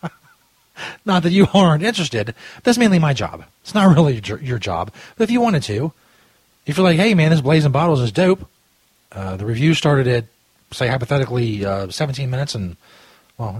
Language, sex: English, male